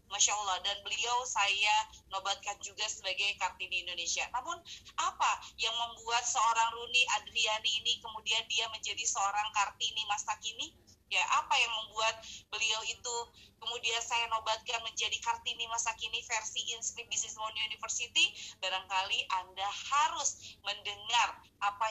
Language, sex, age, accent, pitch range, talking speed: Indonesian, female, 20-39, native, 210-245 Hz, 130 wpm